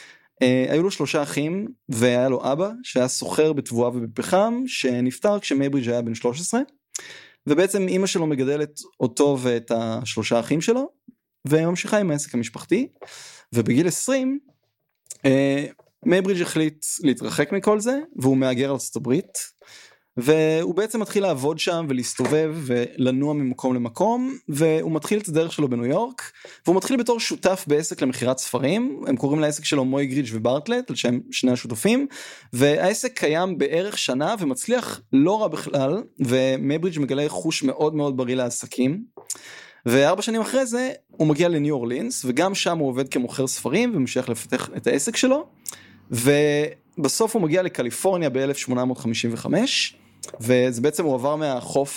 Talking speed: 135 wpm